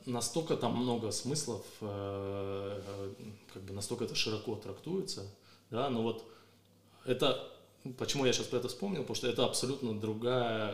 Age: 20-39